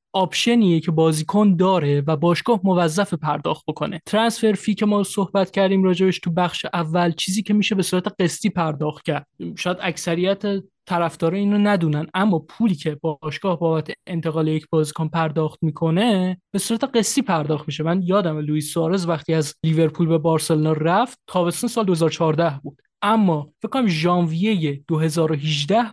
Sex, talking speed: male, 150 wpm